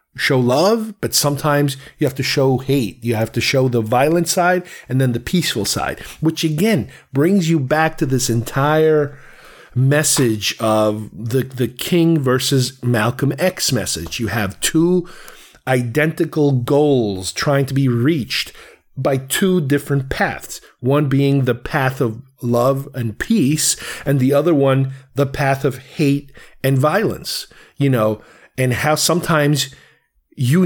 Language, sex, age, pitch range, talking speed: English, male, 40-59, 125-160 Hz, 145 wpm